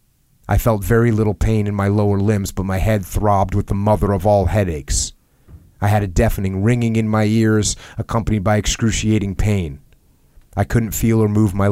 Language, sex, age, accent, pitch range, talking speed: English, male, 30-49, American, 95-110 Hz, 190 wpm